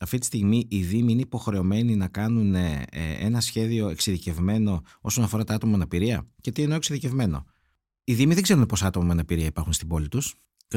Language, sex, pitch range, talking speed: Greek, male, 95-130 Hz, 195 wpm